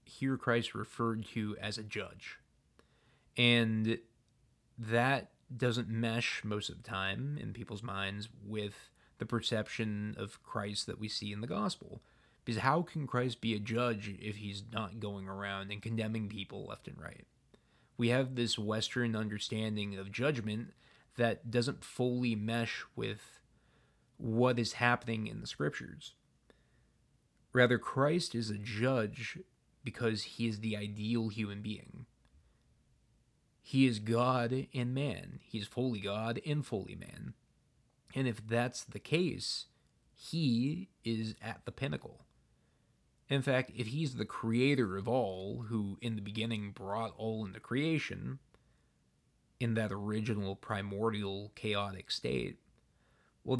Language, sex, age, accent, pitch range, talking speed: English, male, 20-39, American, 105-125 Hz, 135 wpm